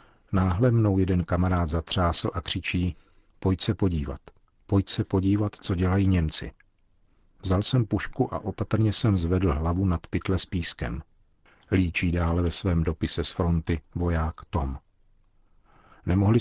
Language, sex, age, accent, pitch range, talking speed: Czech, male, 50-69, native, 85-105 Hz, 140 wpm